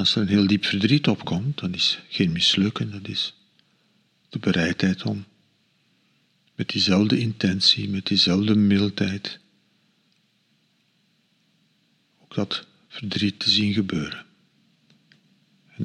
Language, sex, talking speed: Dutch, male, 110 wpm